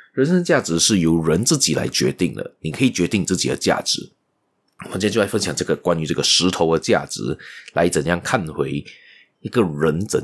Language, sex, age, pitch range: Chinese, male, 30-49, 80-105 Hz